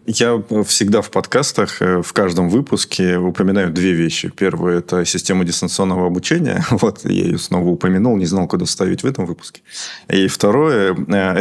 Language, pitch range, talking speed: Russian, 90-100 Hz, 165 wpm